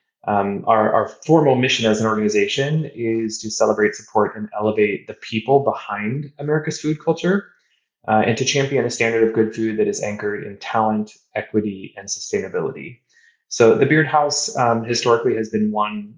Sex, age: male, 20-39